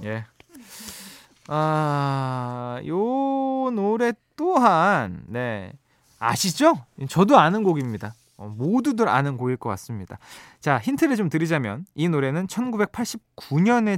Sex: male